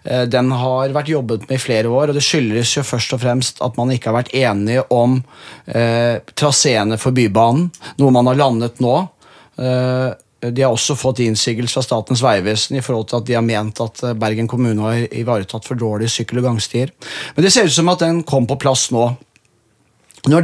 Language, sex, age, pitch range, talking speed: English, male, 30-49, 120-150 Hz, 190 wpm